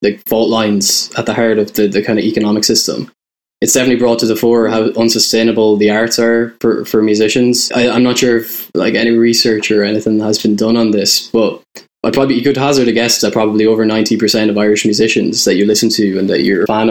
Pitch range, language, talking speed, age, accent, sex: 105-115 Hz, English, 235 wpm, 10-29, Irish, male